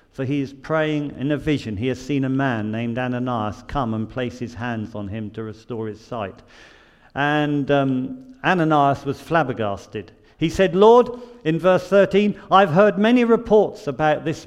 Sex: male